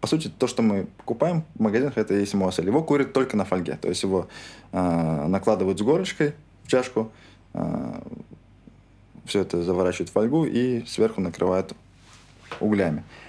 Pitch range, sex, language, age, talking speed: 95-110 Hz, male, Russian, 20-39, 160 wpm